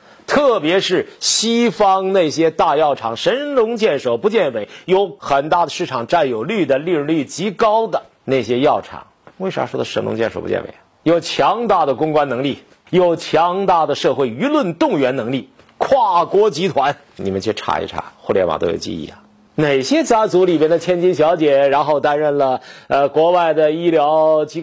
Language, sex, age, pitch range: Chinese, male, 50-69, 140-185 Hz